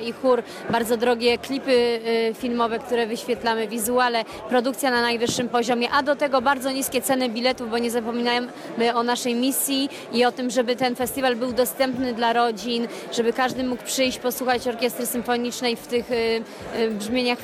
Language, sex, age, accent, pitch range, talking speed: Polish, female, 30-49, native, 240-265 Hz, 160 wpm